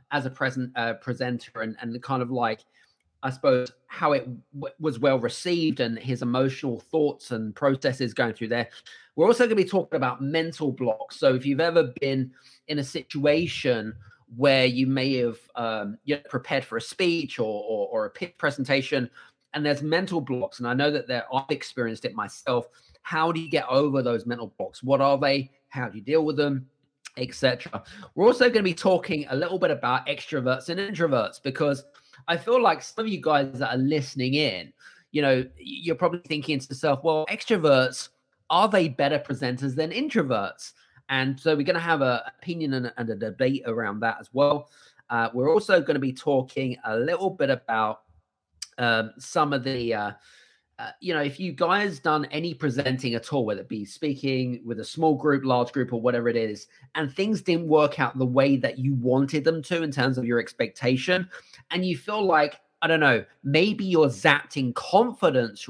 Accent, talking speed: British, 195 wpm